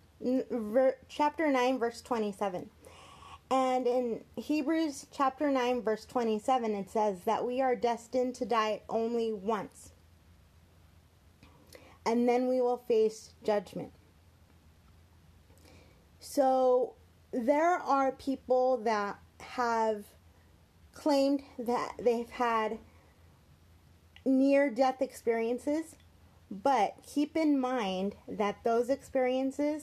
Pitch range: 155-260 Hz